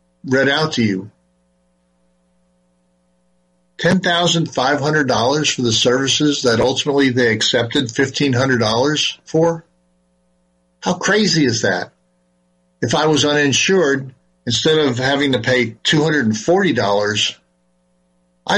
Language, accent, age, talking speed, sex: English, American, 50-69, 90 wpm, male